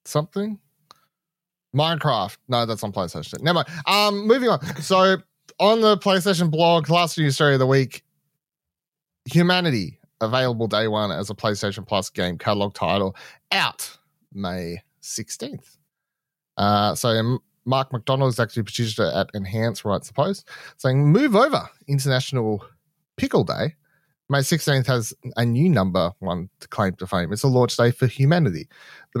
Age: 30-49